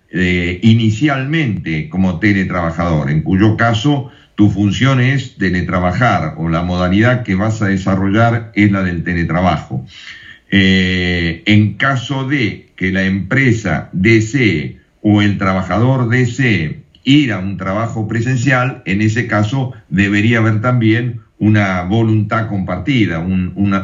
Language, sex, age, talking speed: Spanish, male, 50-69, 125 wpm